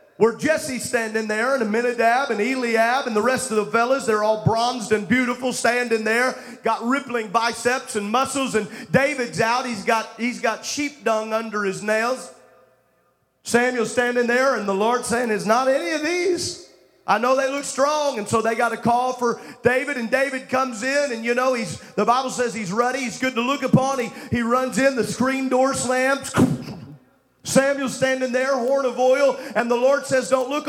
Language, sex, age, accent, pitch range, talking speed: English, male, 40-59, American, 230-270 Hz, 200 wpm